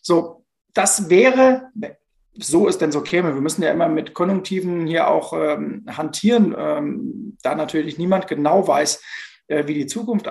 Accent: German